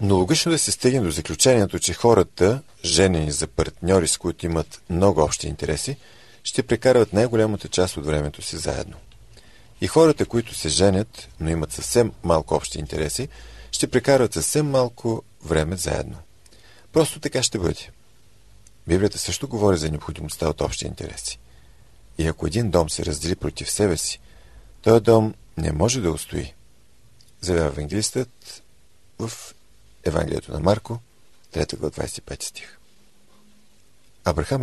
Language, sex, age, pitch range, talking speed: Bulgarian, male, 40-59, 80-115 Hz, 135 wpm